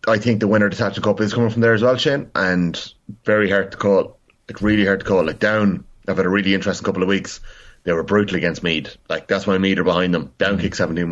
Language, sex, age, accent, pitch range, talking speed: English, male, 30-49, Irish, 95-110 Hz, 270 wpm